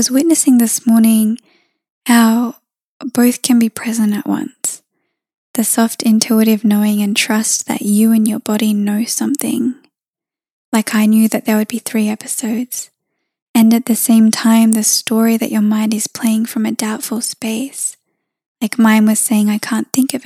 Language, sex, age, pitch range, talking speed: English, female, 10-29, 220-245 Hz, 170 wpm